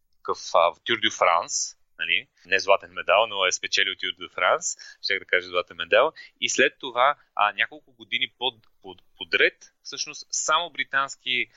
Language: Bulgarian